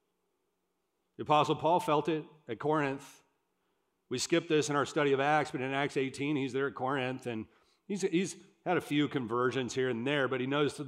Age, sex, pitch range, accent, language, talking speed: 40-59, male, 130-165 Hz, American, English, 205 wpm